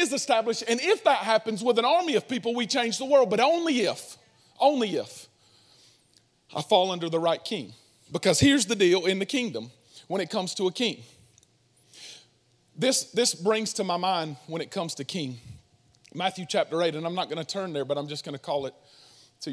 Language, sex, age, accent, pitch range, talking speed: English, male, 40-59, American, 155-220 Hz, 205 wpm